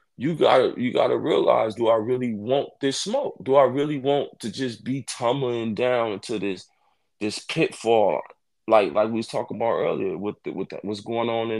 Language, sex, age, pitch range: English, male, 20-39, 115-140 Hz